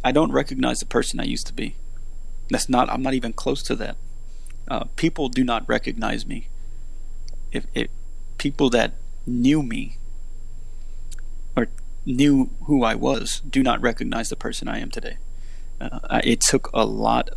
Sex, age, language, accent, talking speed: male, 30-49, English, American, 160 wpm